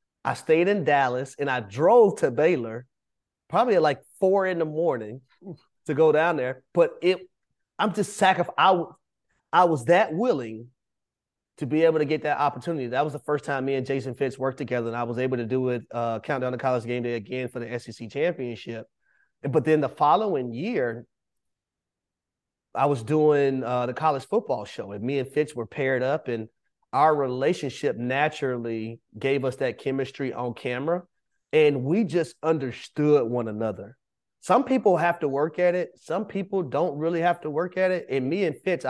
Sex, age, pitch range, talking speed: male, 30-49, 125-160 Hz, 185 wpm